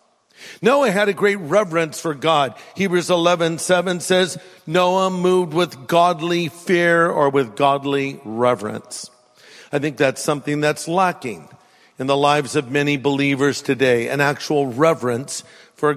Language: English